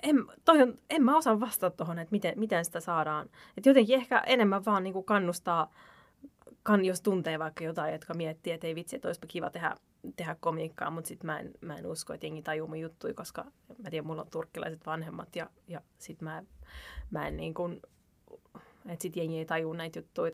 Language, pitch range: Finnish, 165-215 Hz